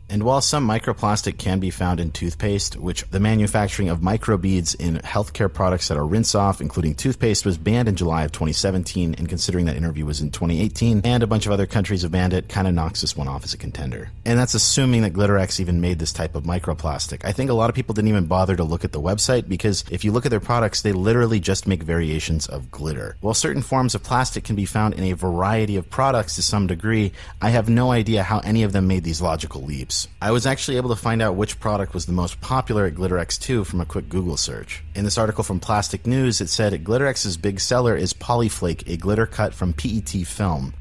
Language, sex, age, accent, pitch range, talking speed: English, male, 40-59, American, 90-110 Hz, 235 wpm